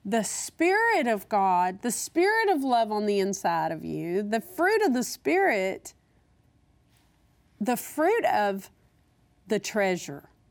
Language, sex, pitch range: English, female, 205-315 Hz